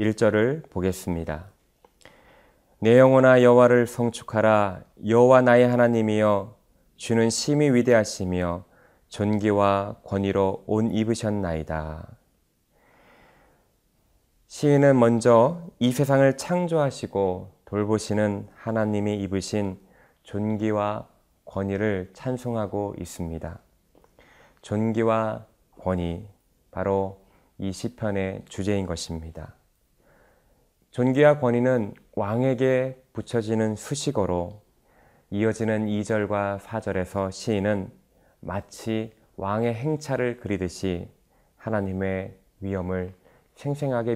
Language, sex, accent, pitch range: Korean, male, native, 95-120 Hz